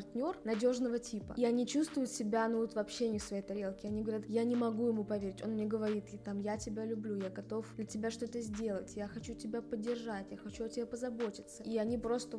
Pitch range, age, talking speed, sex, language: 210-240 Hz, 20-39, 230 wpm, female, Russian